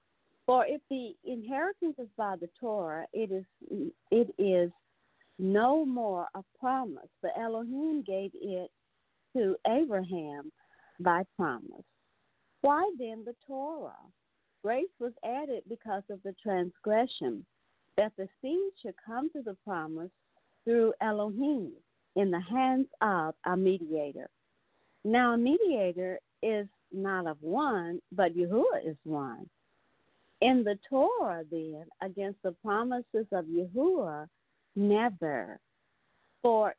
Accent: American